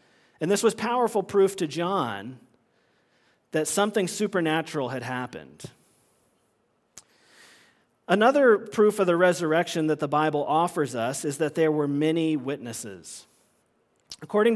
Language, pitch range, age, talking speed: English, 150-195 Hz, 40-59, 120 wpm